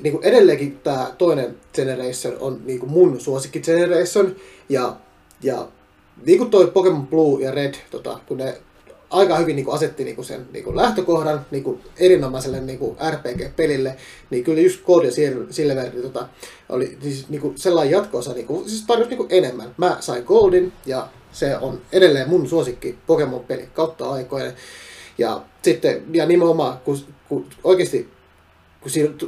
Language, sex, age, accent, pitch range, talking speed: Finnish, male, 30-49, native, 140-190 Hz, 145 wpm